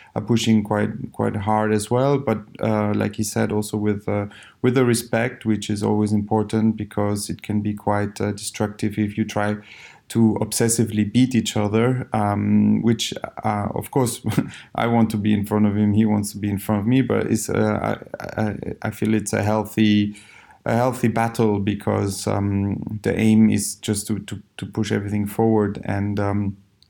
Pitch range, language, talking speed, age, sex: 100-110 Hz, English, 185 wpm, 30-49, male